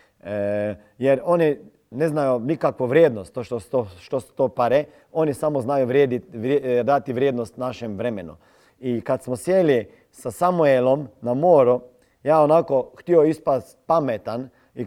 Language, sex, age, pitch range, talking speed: Croatian, male, 40-59, 120-155 Hz, 135 wpm